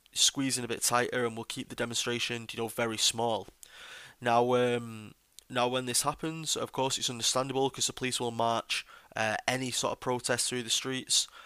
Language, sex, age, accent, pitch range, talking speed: English, male, 20-39, British, 115-130 Hz, 190 wpm